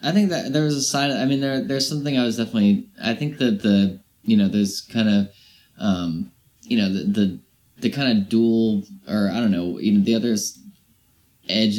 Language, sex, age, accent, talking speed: English, male, 20-39, American, 215 wpm